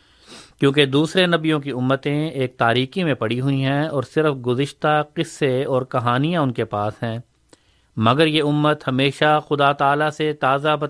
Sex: male